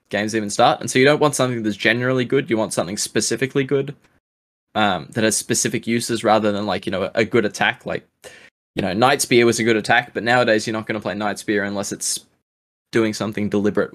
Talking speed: 230 wpm